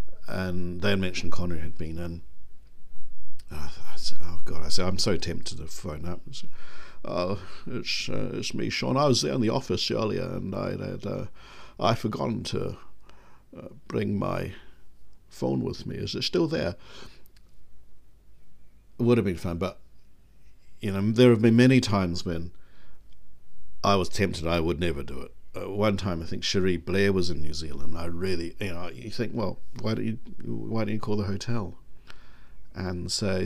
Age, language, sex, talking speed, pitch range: 60-79, English, male, 185 wpm, 85-105 Hz